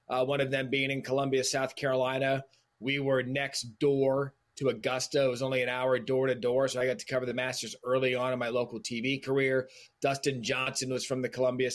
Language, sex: English, male